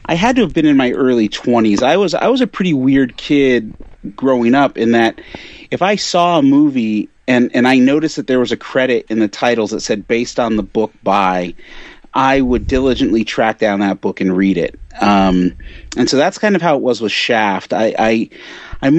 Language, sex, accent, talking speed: English, male, American, 220 wpm